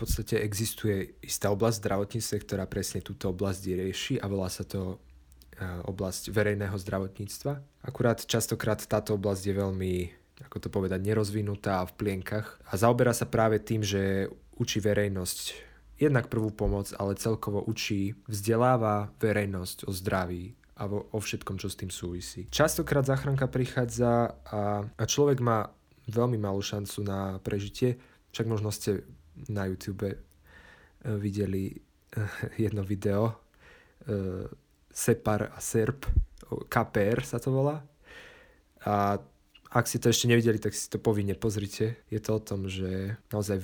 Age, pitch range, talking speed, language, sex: 20-39, 100-115 Hz, 140 wpm, Slovak, male